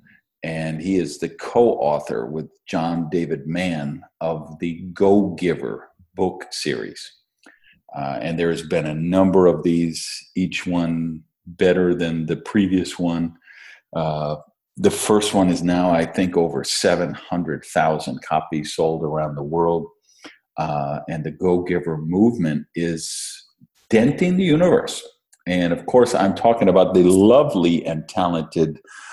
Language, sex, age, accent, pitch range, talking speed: English, male, 50-69, American, 80-100 Hz, 135 wpm